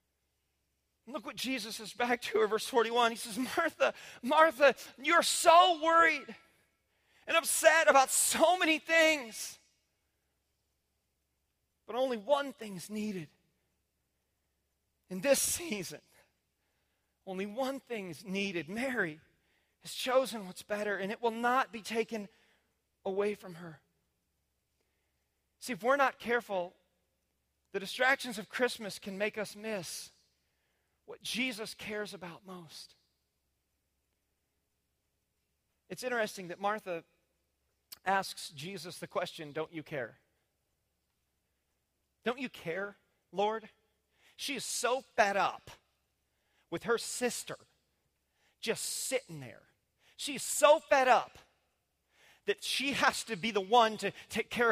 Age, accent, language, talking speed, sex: 40-59, American, English, 120 wpm, male